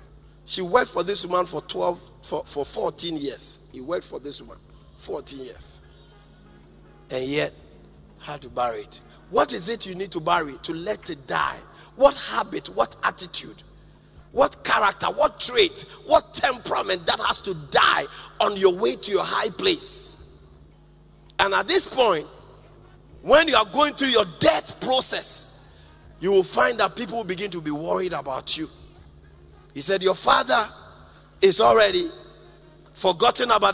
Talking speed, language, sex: 155 wpm, English, male